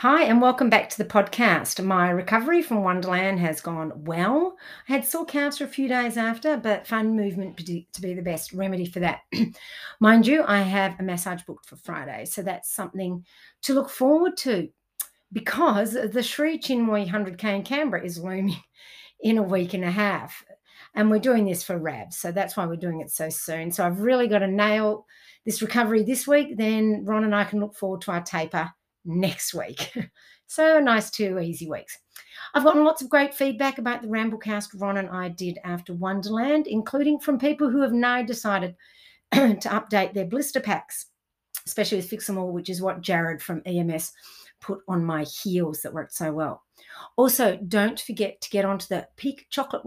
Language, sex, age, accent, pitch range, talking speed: English, female, 50-69, Australian, 180-240 Hz, 190 wpm